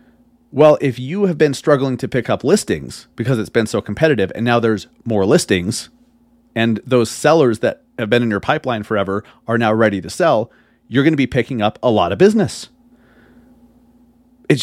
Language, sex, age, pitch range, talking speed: English, male, 30-49, 110-155 Hz, 185 wpm